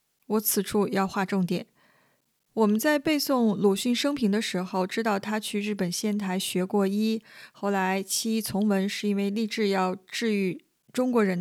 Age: 20-39